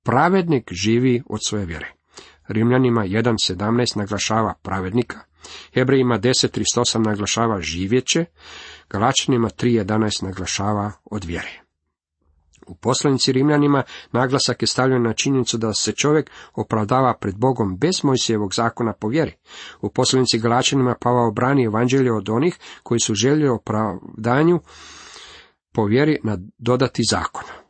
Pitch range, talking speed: 110-140 Hz, 115 wpm